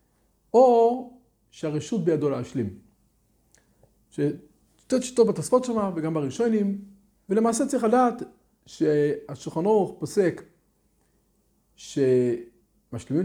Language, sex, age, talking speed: Hebrew, male, 40-59, 65 wpm